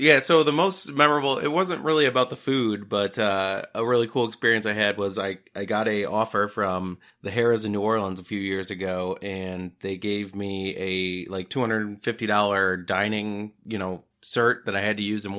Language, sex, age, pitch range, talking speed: English, male, 30-49, 95-115 Hz, 220 wpm